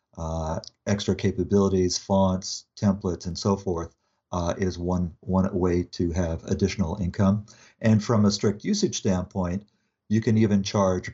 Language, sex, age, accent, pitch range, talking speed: English, male, 50-69, American, 90-110 Hz, 145 wpm